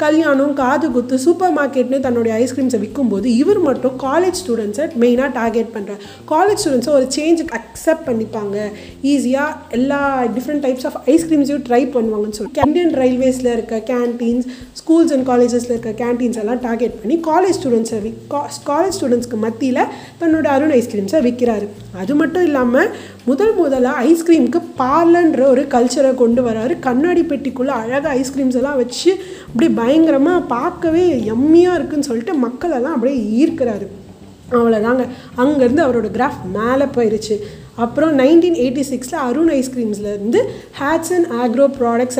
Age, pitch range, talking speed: 30-49, 240-305 Hz, 140 wpm